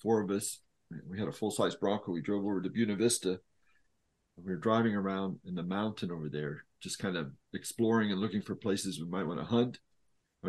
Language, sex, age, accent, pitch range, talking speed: English, male, 40-59, American, 95-120 Hz, 215 wpm